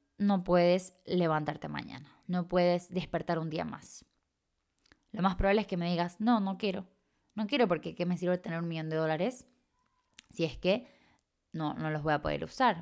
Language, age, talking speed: Spanish, 20-39, 190 wpm